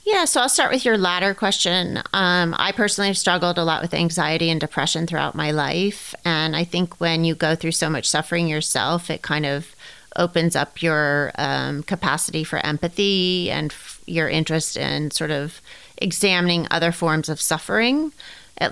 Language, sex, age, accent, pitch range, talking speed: English, female, 30-49, American, 155-175 Hz, 175 wpm